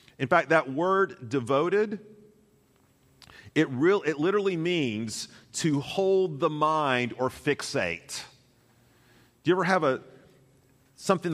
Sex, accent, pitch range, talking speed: male, American, 120-170 Hz, 115 wpm